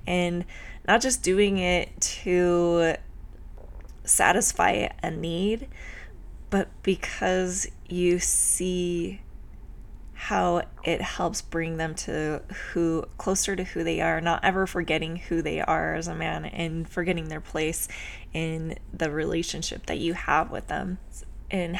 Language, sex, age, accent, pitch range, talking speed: English, female, 20-39, American, 160-185 Hz, 130 wpm